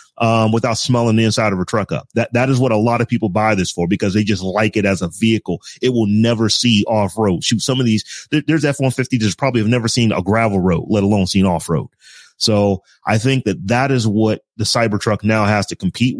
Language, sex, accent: English, male, American